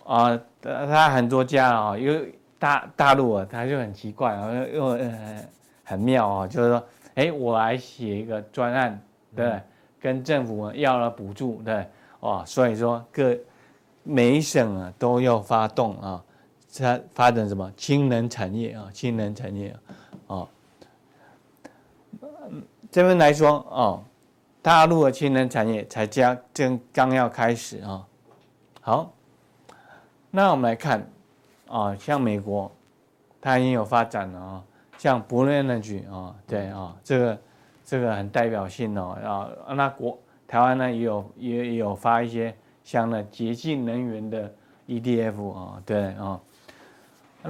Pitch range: 110-135 Hz